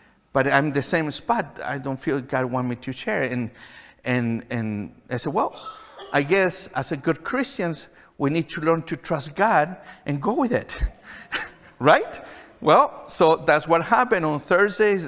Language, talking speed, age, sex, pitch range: English, 180 wpm, 50-69, male, 125-165 Hz